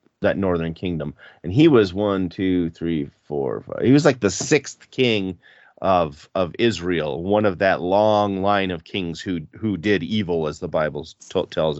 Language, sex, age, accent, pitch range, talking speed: English, male, 40-59, American, 90-120 Hz, 180 wpm